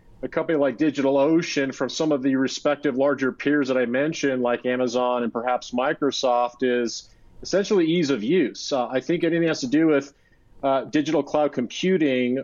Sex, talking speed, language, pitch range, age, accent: male, 175 wpm, English, 130-150 Hz, 40-59, American